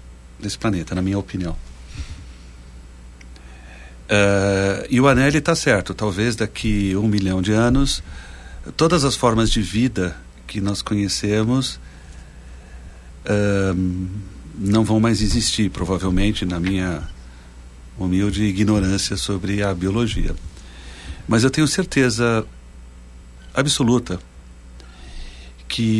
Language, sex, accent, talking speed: Portuguese, male, Brazilian, 100 wpm